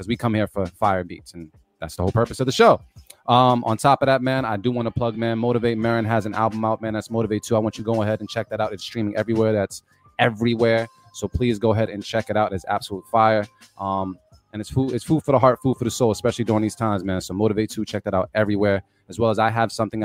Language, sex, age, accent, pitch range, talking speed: English, male, 20-39, American, 100-125 Hz, 280 wpm